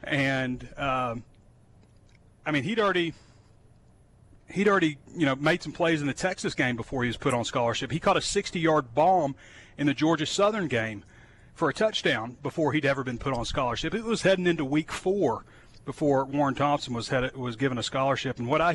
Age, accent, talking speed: 40-59, American, 195 wpm